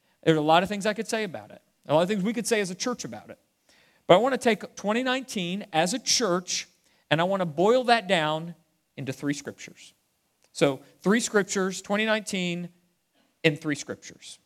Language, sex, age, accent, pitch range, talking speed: English, male, 40-59, American, 130-190 Hz, 200 wpm